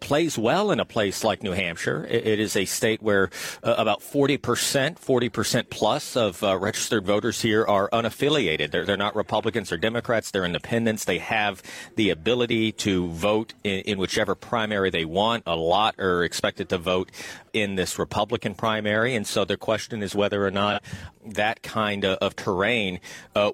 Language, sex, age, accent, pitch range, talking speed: English, male, 40-59, American, 100-115 Hz, 175 wpm